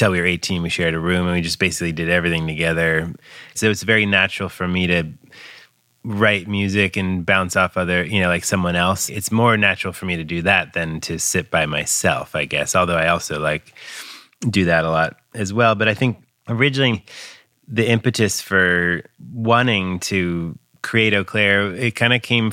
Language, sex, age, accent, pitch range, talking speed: English, male, 30-49, American, 80-100 Hz, 195 wpm